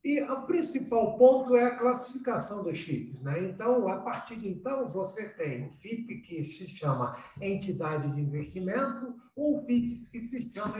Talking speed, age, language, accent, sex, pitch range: 170 wpm, 60-79, Portuguese, Brazilian, male, 180-240 Hz